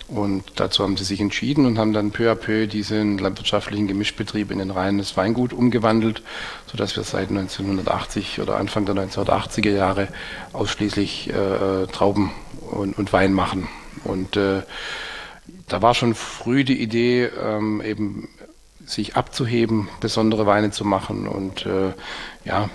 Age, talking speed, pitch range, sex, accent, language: 40-59, 150 wpm, 95-110 Hz, male, German, German